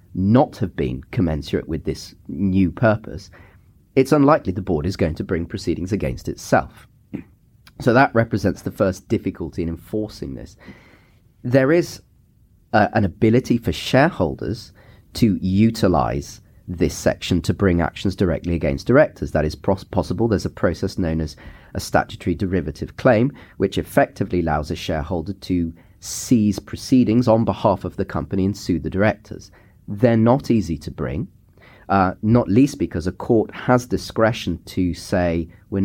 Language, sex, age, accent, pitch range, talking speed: English, male, 30-49, British, 90-120 Hz, 150 wpm